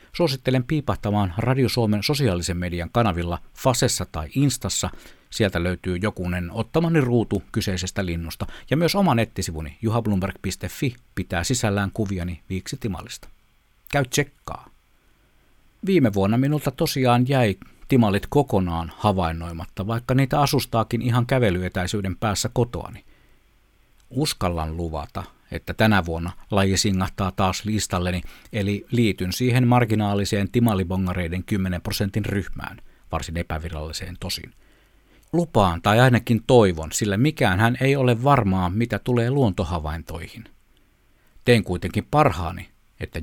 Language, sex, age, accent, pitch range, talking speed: Finnish, male, 60-79, native, 90-120 Hz, 110 wpm